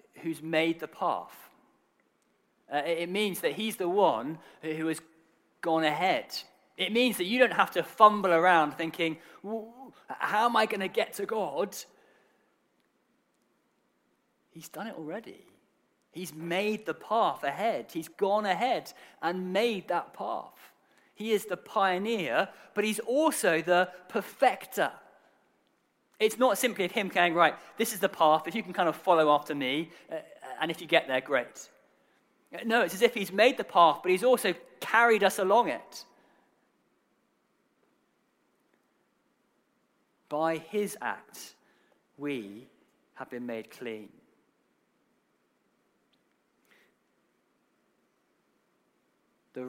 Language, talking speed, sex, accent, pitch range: English, 130 wpm, male, British, 155-215 Hz